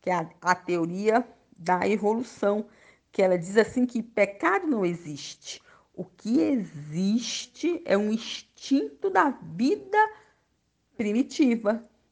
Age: 50-69